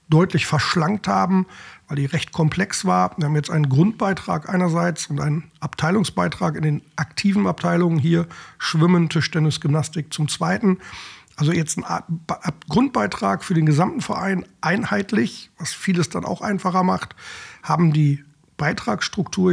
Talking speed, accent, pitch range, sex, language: 140 wpm, German, 155-180 Hz, male, German